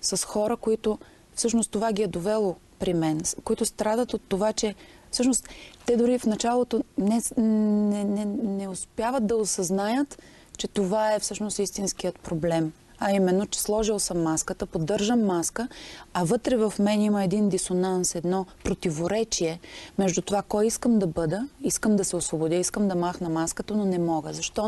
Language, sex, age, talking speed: Bulgarian, female, 30-49, 165 wpm